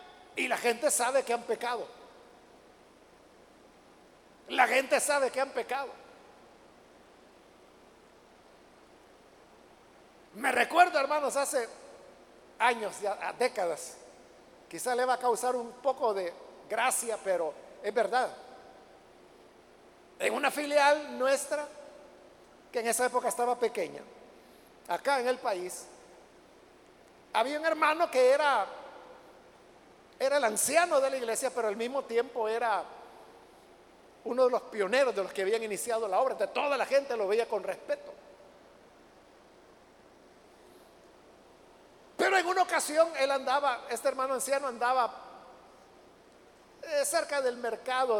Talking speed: 115 wpm